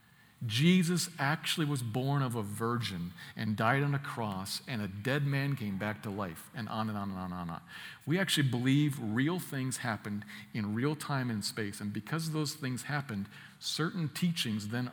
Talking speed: 195 wpm